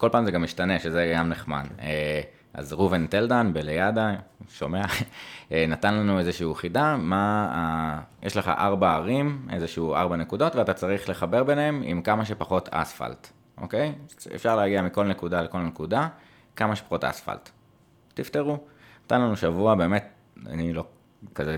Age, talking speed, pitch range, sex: 20-39, 145 wpm, 80-110 Hz, male